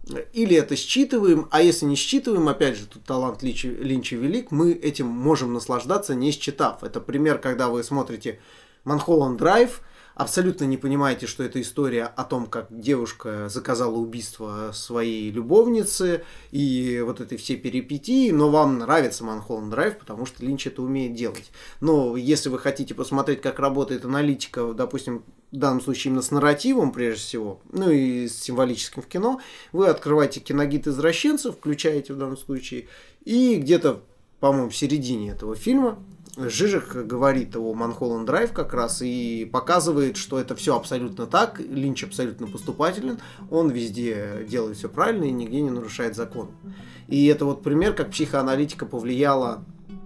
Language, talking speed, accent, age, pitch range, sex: Russian, 155 wpm, native, 20-39, 120-155 Hz, male